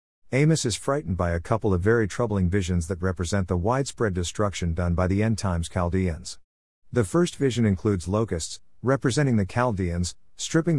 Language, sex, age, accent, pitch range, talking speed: English, male, 50-69, American, 90-120 Hz, 160 wpm